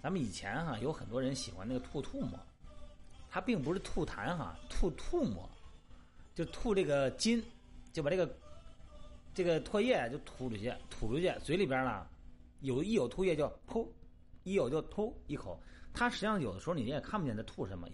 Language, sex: Chinese, male